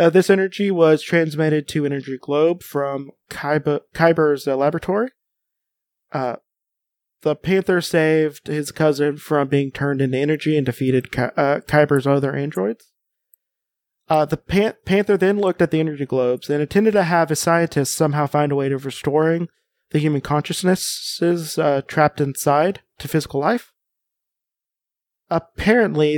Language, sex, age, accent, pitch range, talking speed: English, male, 30-49, American, 145-175 Hz, 140 wpm